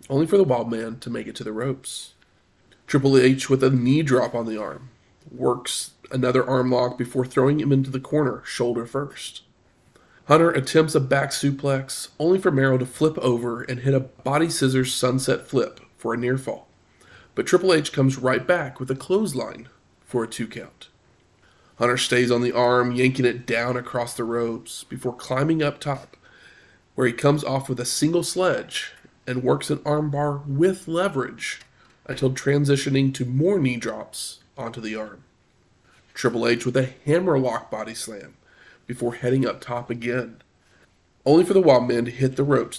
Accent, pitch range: American, 120-140 Hz